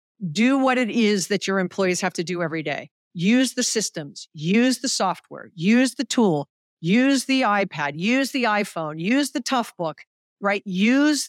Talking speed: 170 wpm